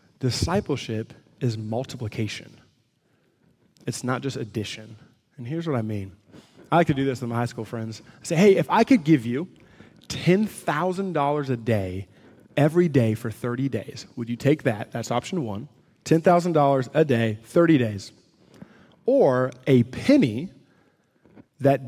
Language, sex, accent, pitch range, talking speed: English, male, American, 115-155 Hz, 150 wpm